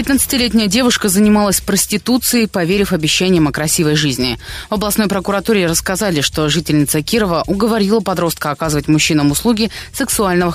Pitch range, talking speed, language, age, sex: 155-205 Hz, 125 wpm, Russian, 20-39, female